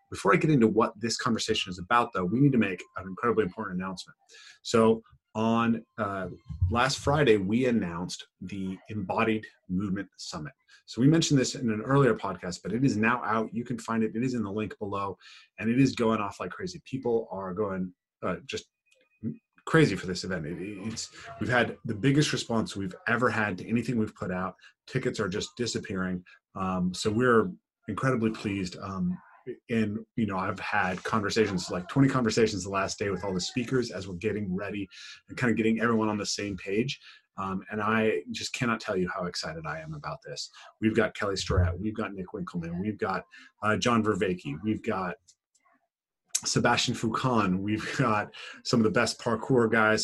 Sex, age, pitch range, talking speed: male, 30-49, 100-120 Hz, 190 wpm